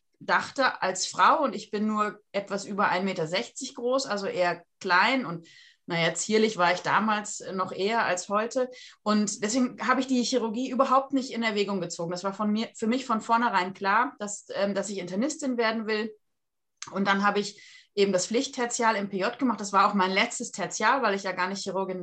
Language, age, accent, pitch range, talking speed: German, 30-49, German, 180-225 Hz, 200 wpm